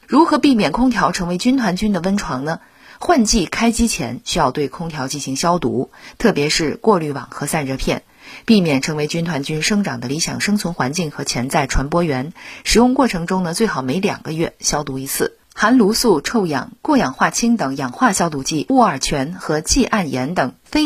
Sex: female